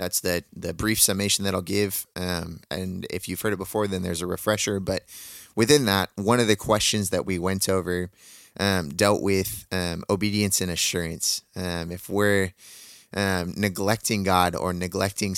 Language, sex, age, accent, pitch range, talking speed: English, male, 20-39, American, 90-100 Hz, 175 wpm